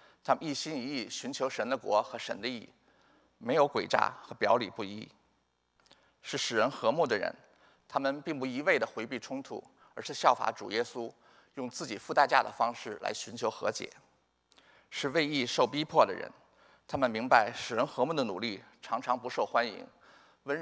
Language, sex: Chinese, male